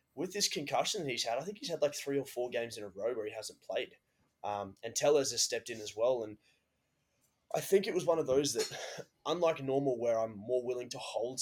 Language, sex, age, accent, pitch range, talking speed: English, male, 20-39, Australian, 110-140 Hz, 245 wpm